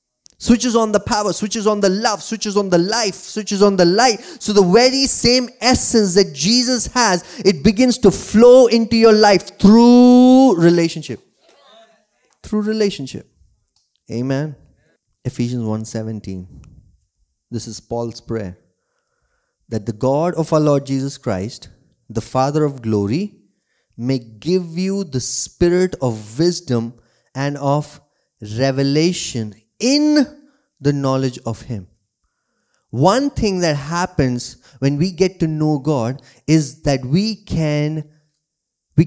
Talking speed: 130 wpm